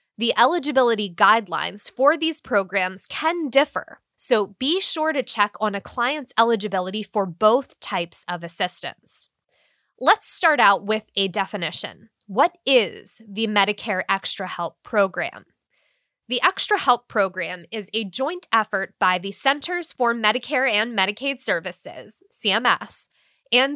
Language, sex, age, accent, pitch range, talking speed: English, female, 20-39, American, 200-285 Hz, 135 wpm